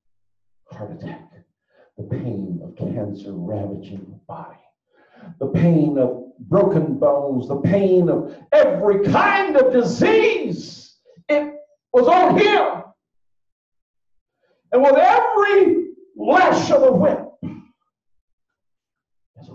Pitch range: 150-195 Hz